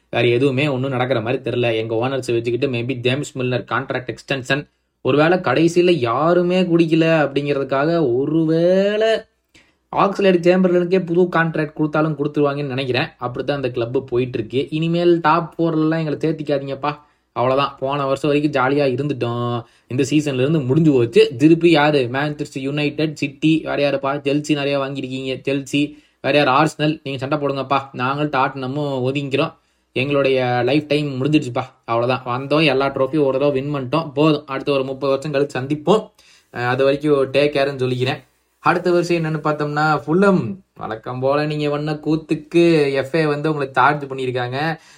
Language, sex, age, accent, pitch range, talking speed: Tamil, male, 20-39, native, 130-155 Hz, 145 wpm